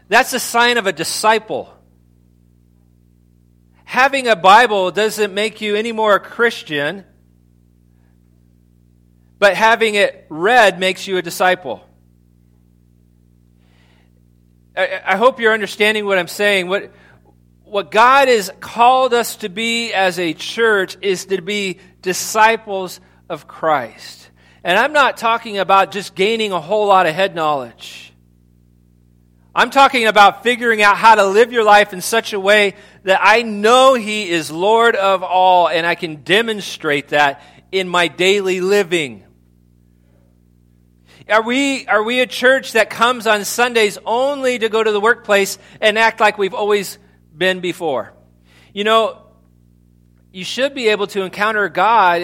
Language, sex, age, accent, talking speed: English, male, 40-59, American, 140 wpm